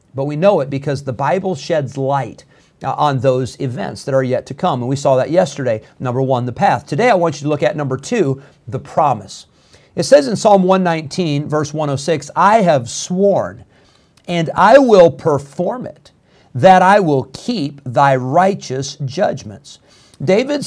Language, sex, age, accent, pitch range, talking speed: English, male, 50-69, American, 135-170 Hz, 175 wpm